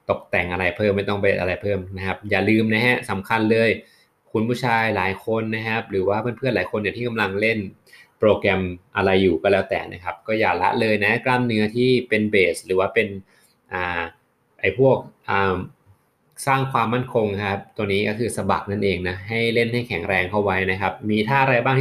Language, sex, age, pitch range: Thai, male, 20-39, 95-115 Hz